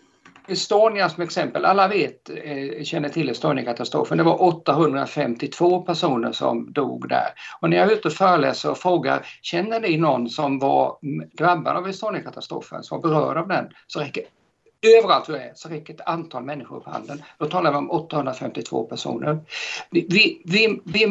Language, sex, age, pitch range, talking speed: Swedish, male, 50-69, 135-180 Hz, 160 wpm